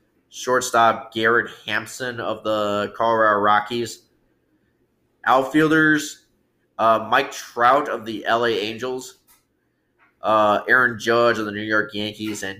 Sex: male